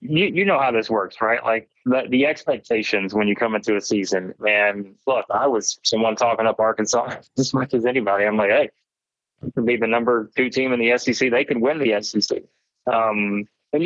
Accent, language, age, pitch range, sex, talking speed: American, English, 20-39, 110-135 Hz, male, 210 wpm